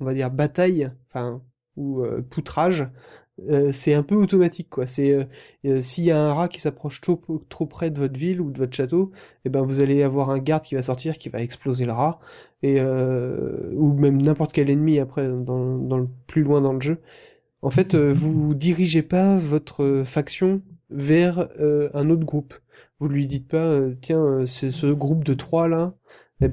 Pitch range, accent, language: 135-155 Hz, French, French